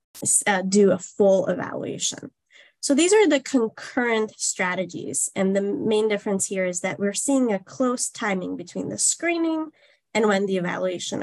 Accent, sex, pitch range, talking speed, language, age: American, female, 190-220 Hz, 160 wpm, English, 10-29